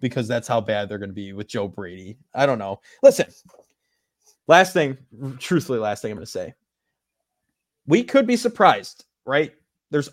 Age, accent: 20-39, American